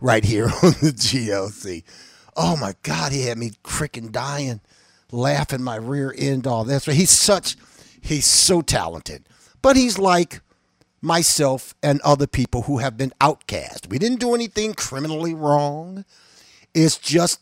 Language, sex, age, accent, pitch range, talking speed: English, male, 50-69, American, 110-155 Hz, 155 wpm